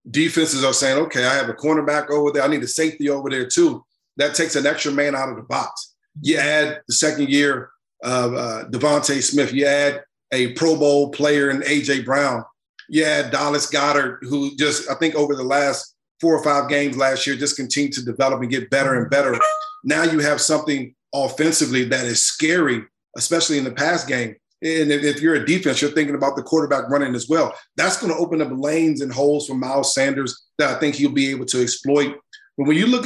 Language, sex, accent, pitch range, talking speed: English, male, American, 135-150 Hz, 215 wpm